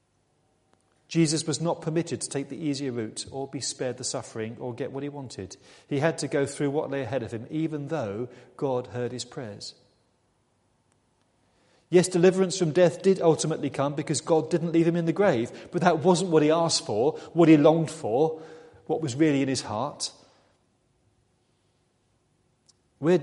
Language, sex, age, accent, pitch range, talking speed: English, male, 40-59, British, 120-155 Hz, 175 wpm